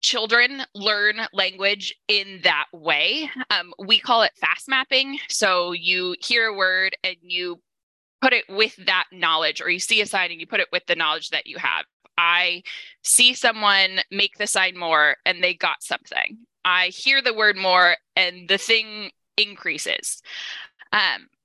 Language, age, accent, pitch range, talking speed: English, 20-39, American, 180-230 Hz, 170 wpm